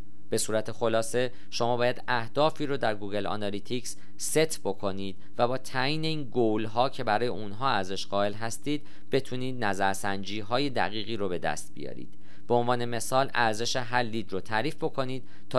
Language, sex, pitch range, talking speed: Persian, male, 100-125 Hz, 150 wpm